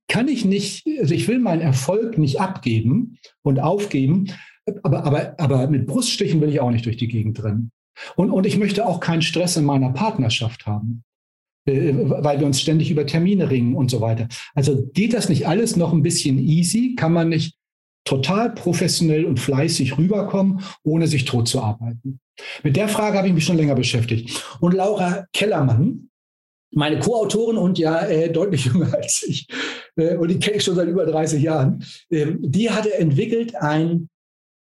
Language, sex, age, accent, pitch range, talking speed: German, male, 60-79, German, 135-185 Hz, 180 wpm